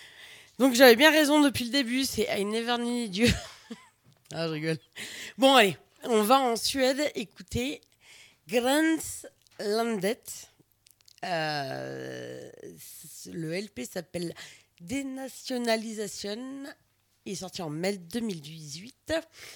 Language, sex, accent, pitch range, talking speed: French, female, French, 170-245 Hz, 125 wpm